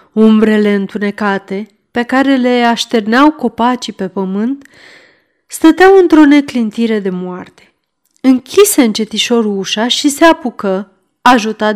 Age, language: 30-49, Romanian